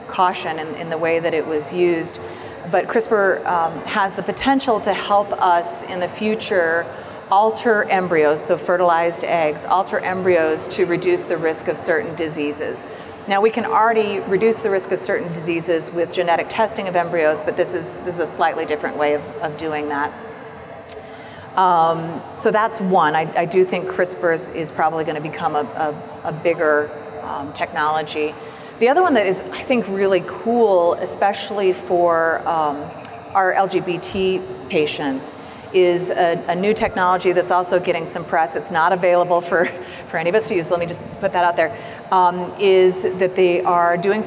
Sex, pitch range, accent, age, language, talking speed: female, 165-195 Hz, American, 40-59, English, 180 wpm